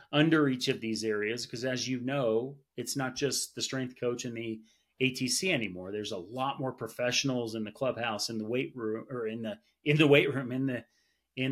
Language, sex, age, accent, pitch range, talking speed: English, male, 30-49, American, 110-135 Hz, 215 wpm